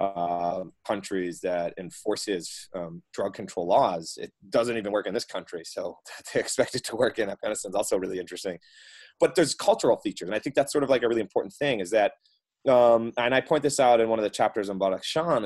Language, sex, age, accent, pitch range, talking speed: English, male, 30-49, American, 95-135 Hz, 220 wpm